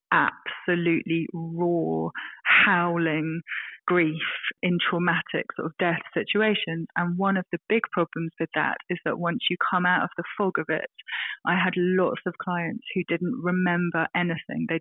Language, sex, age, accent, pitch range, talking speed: English, female, 30-49, British, 165-185 Hz, 160 wpm